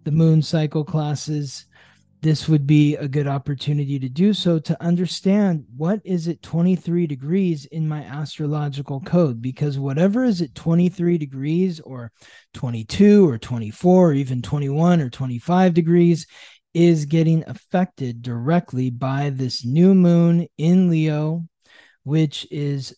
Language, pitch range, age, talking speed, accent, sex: English, 145-170 Hz, 20-39, 135 wpm, American, male